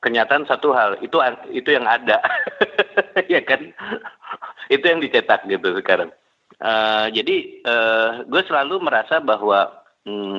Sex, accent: male, native